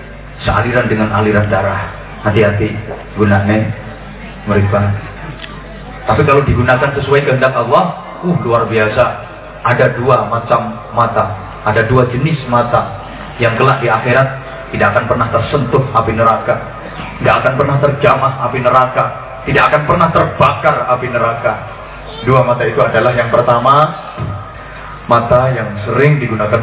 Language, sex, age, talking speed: English, male, 30-49, 125 wpm